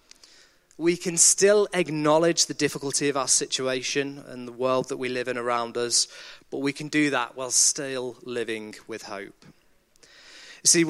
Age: 30-49